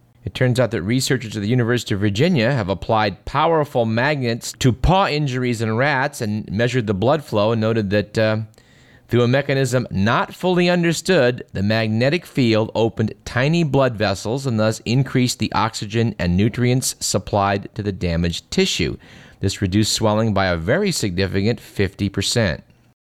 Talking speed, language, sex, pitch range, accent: 160 wpm, English, male, 105-130 Hz, American